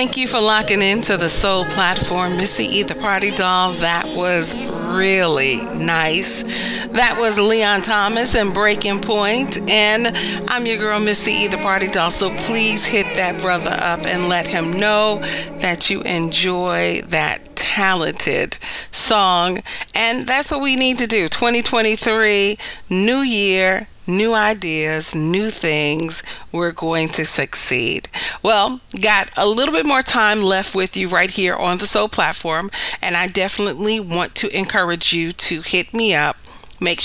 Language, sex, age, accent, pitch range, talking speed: English, female, 40-59, American, 180-215 Hz, 155 wpm